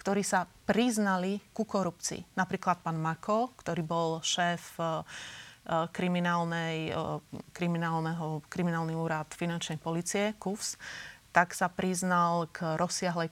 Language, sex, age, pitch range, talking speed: Slovak, female, 30-49, 170-200 Hz, 100 wpm